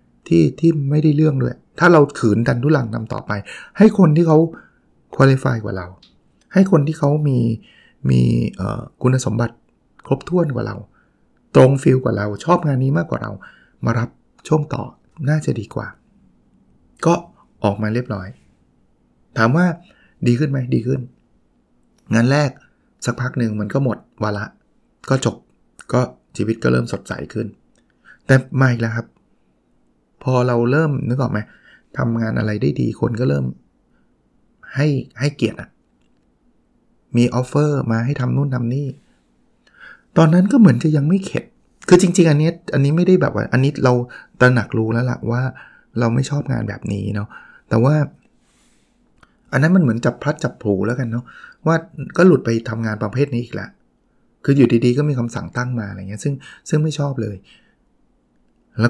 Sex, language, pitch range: male, Thai, 115-150 Hz